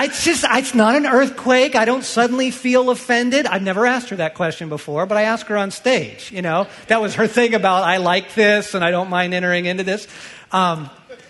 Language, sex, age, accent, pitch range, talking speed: English, male, 50-69, American, 155-240 Hz, 225 wpm